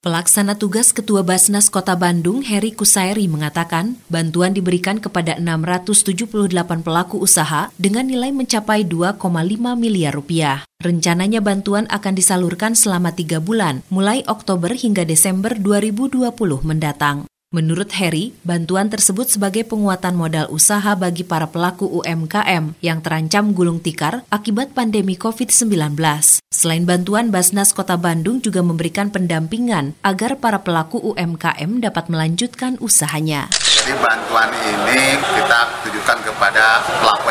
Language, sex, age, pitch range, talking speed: Indonesian, female, 30-49, 170-210 Hz, 120 wpm